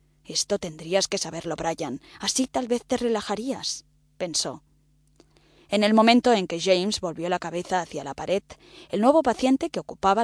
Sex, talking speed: female, 165 wpm